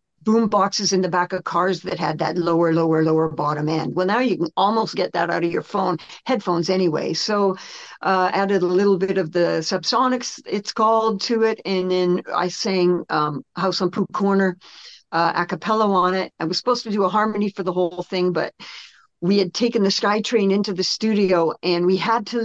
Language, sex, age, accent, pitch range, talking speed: English, female, 50-69, American, 175-205 Hz, 210 wpm